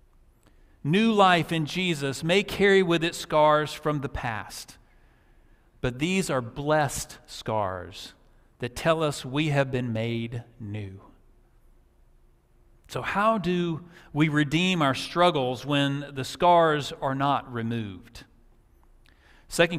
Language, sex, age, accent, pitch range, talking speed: English, male, 40-59, American, 120-160 Hz, 120 wpm